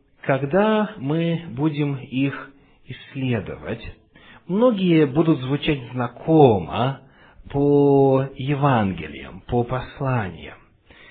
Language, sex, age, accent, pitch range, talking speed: Russian, male, 40-59, native, 115-165 Hz, 70 wpm